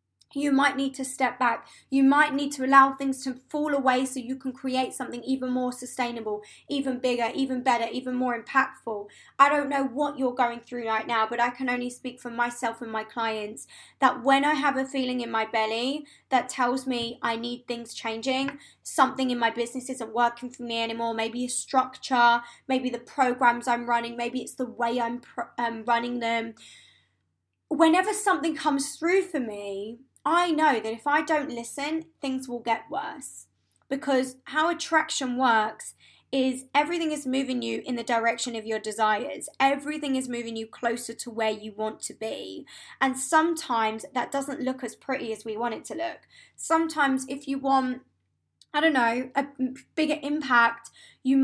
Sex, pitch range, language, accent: female, 235-275 Hz, English, British